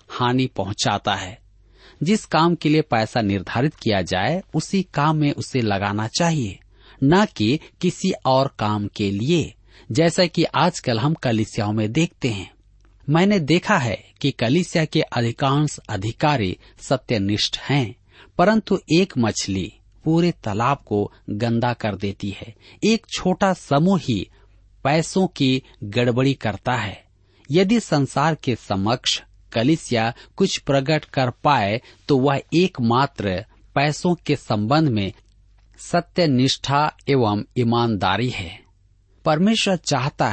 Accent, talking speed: native, 125 wpm